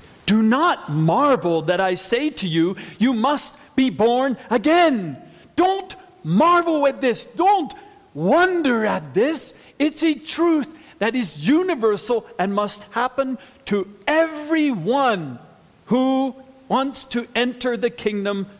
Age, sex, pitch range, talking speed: 50-69, male, 150-240 Hz, 125 wpm